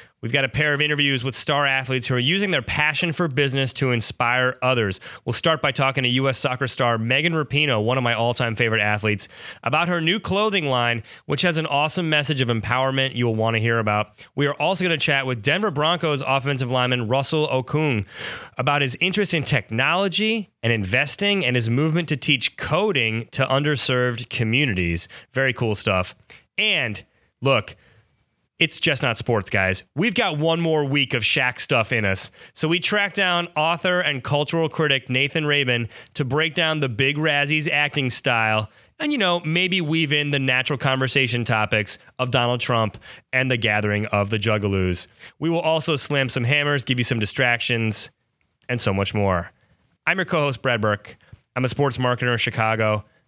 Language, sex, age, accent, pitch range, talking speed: English, male, 30-49, American, 115-150 Hz, 185 wpm